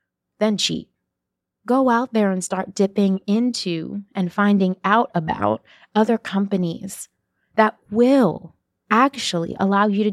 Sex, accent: female, American